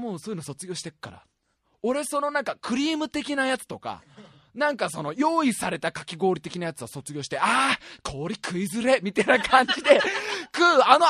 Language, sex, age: Japanese, male, 20-39